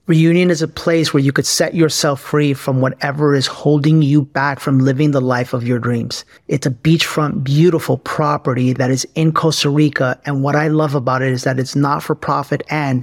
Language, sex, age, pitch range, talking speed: English, male, 30-49, 135-155 Hz, 210 wpm